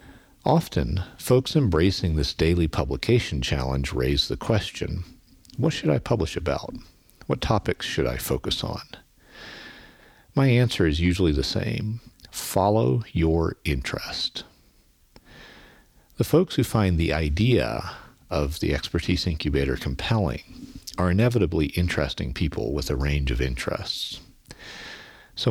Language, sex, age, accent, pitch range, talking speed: English, male, 50-69, American, 75-110 Hz, 120 wpm